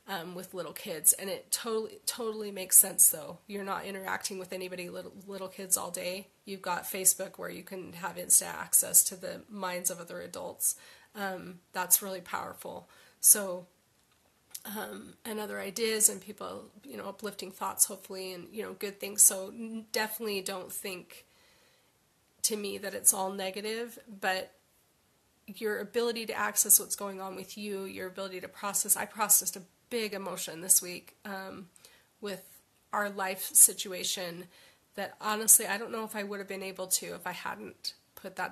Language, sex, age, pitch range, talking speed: English, female, 30-49, 185-210 Hz, 170 wpm